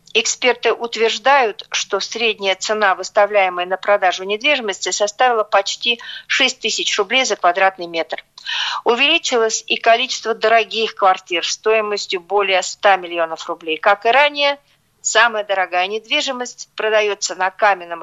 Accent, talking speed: native, 120 wpm